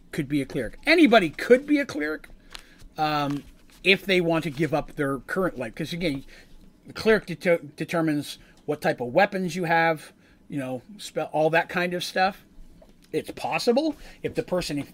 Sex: male